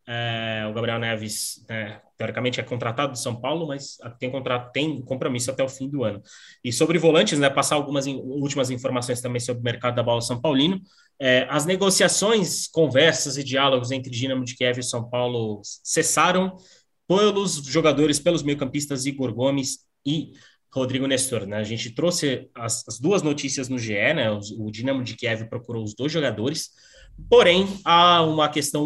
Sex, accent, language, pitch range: male, Brazilian, Portuguese, 120-140 Hz